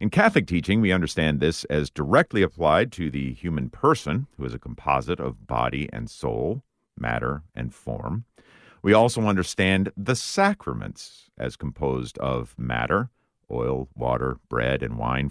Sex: male